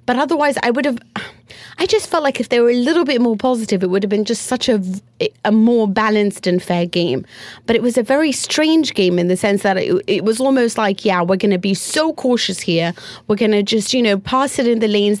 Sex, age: female, 30-49